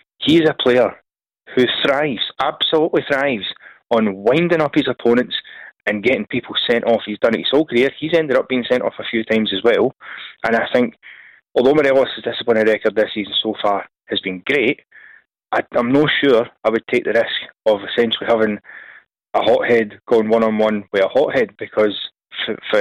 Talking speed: 185 wpm